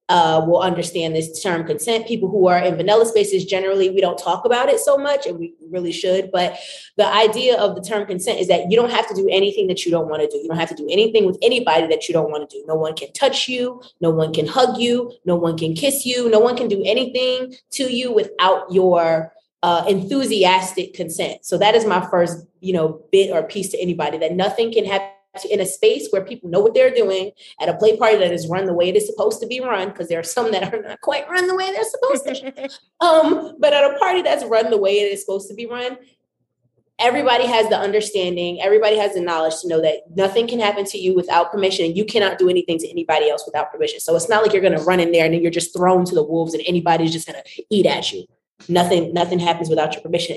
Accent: American